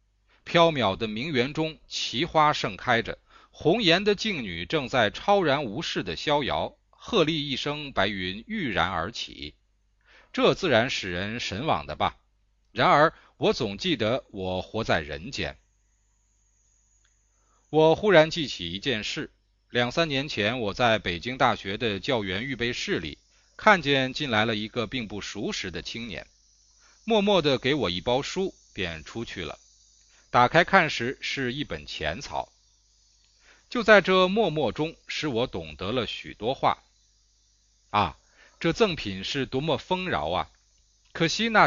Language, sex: Chinese, male